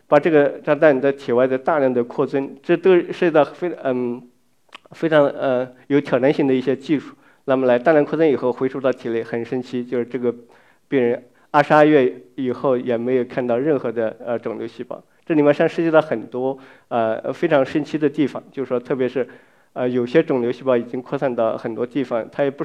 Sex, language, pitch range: male, Chinese, 120-145 Hz